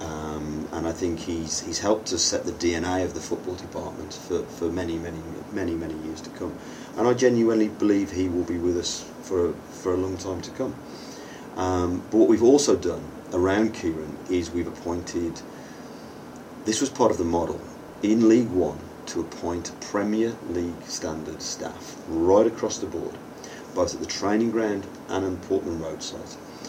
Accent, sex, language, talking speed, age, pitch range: British, male, English, 180 wpm, 40-59, 85-100 Hz